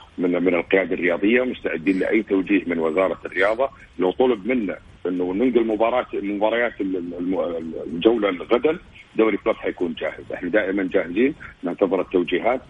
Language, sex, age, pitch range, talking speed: Arabic, male, 50-69, 90-110 Hz, 135 wpm